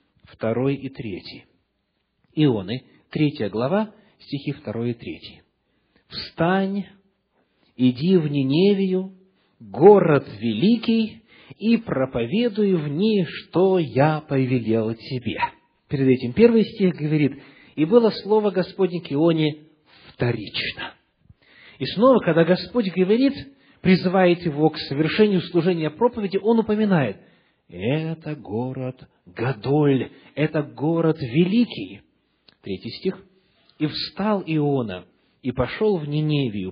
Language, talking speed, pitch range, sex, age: English, 105 wpm, 135-195 Hz, male, 40-59